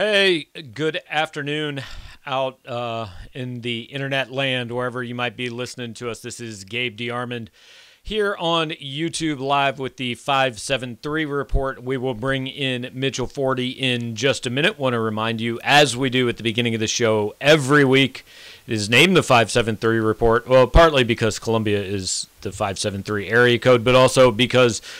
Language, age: English, 40-59